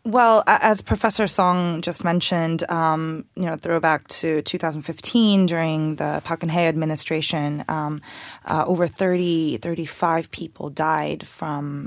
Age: 20-39